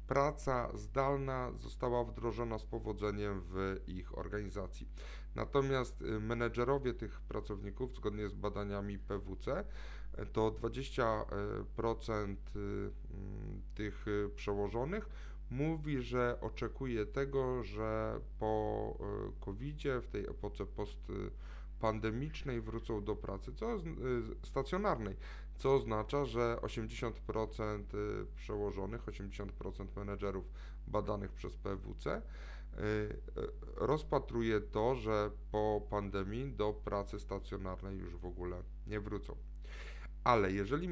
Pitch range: 100-125 Hz